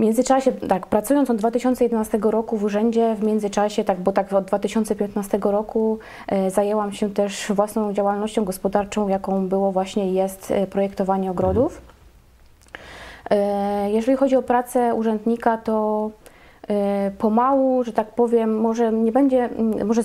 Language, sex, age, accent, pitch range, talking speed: Polish, female, 20-39, native, 205-235 Hz, 140 wpm